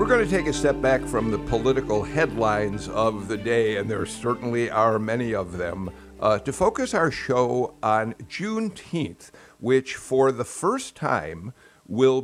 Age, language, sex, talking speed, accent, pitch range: 60-79, English, male, 165 wpm, American, 110-145 Hz